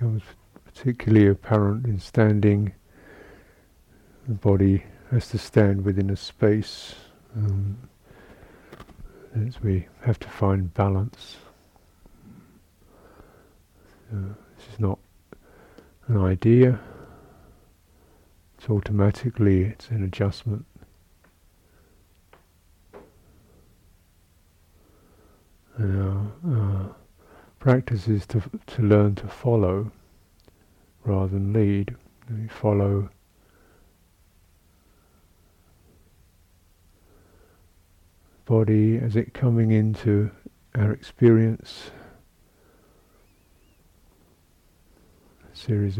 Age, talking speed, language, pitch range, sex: 50-69, 70 wpm, English, 85-110 Hz, male